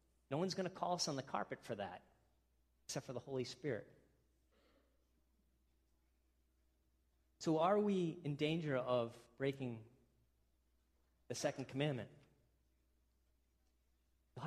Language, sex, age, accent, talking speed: English, male, 30-49, American, 110 wpm